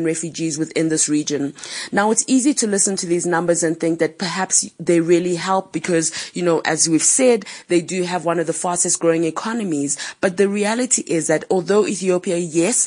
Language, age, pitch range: English, 30-49, 165-195 Hz